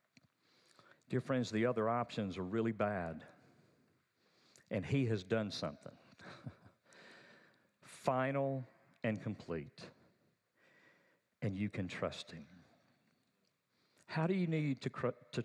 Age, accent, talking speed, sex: 50-69, American, 105 wpm, male